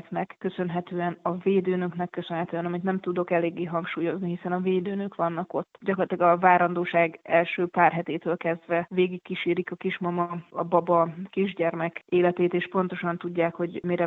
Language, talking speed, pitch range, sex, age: Hungarian, 145 wpm, 170-185 Hz, female, 20-39